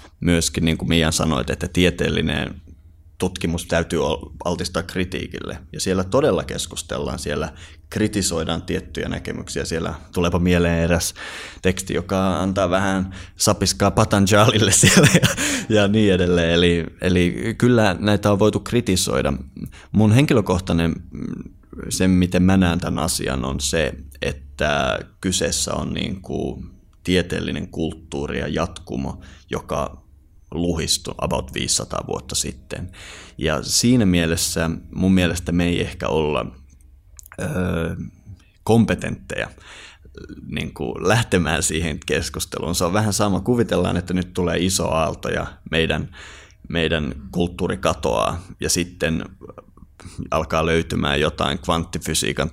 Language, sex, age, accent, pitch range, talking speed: Finnish, male, 20-39, native, 80-95 Hz, 120 wpm